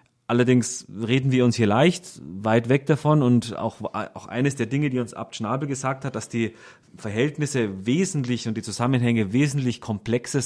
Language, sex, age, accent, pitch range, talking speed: German, male, 30-49, German, 115-145 Hz, 170 wpm